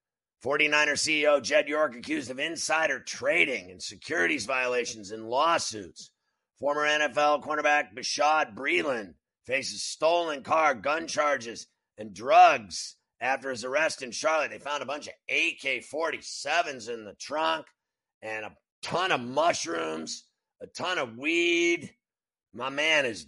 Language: English